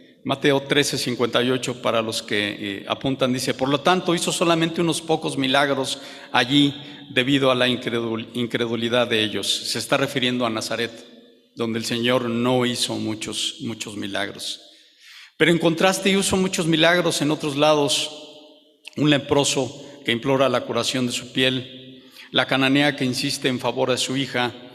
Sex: male